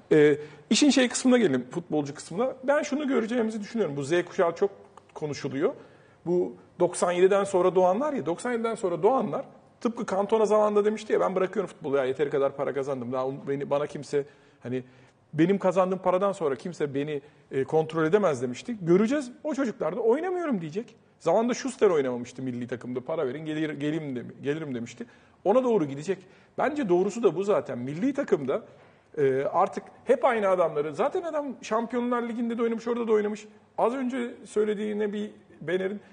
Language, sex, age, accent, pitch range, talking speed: Turkish, male, 40-59, native, 150-235 Hz, 160 wpm